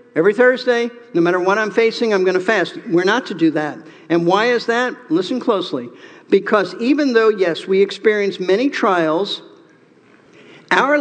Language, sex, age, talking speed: English, male, 50-69, 170 wpm